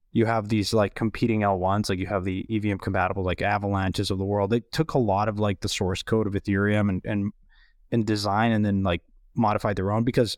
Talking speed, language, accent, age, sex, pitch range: 225 wpm, English, American, 20-39, male, 100-120 Hz